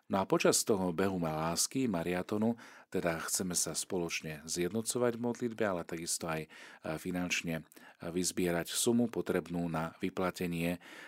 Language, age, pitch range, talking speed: Slovak, 40-59, 80-100 Hz, 125 wpm